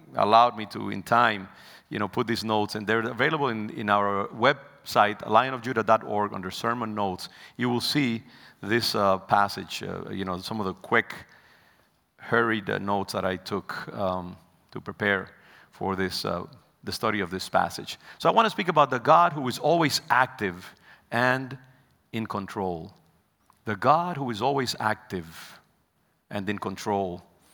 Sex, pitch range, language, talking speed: male, 100-130 Hz, English, 165 wpm